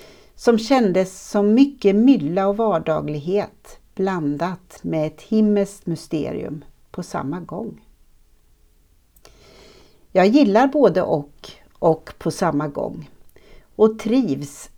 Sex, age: female, 60-79